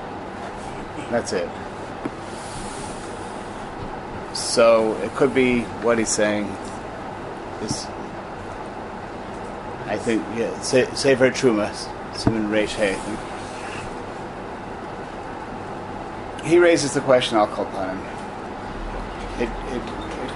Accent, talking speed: American, 80 wpm